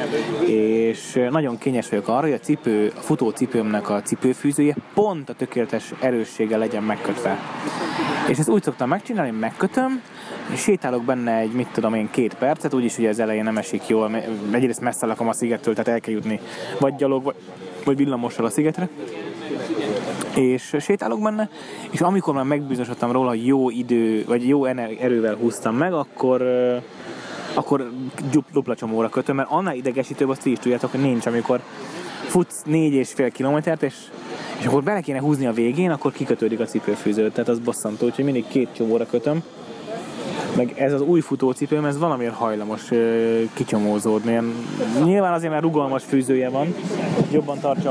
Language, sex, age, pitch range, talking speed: Hungarian, male, 20-39, 115-150 Hz, 160 wpm